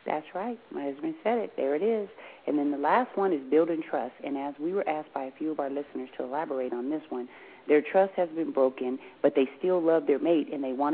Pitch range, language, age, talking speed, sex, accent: 140-165 Hz, English, 40-59, 260 wpm, female, American